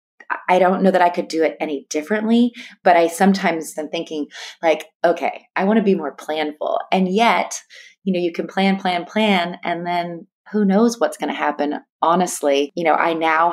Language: English